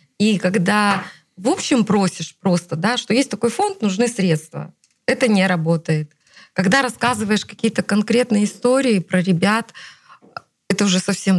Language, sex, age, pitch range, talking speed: Russian, female, 20-39, 165-205 Hz, 130 wpm